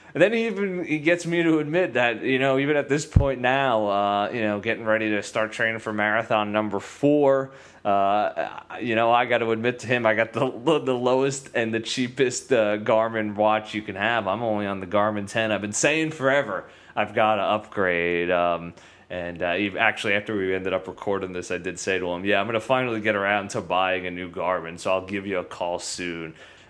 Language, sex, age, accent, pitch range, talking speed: English, male, 20-39, American, 100-130 Hz, 220 wpm